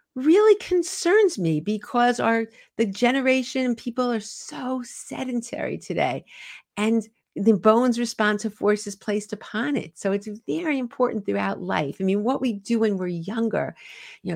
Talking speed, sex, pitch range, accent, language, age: 150 wpm, female, 165-220 Hz, American, English, 50-69